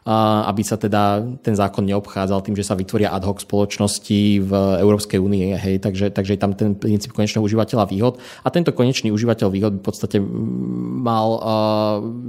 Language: Slovak